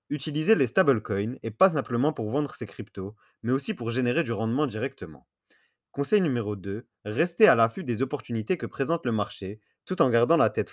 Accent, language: French, French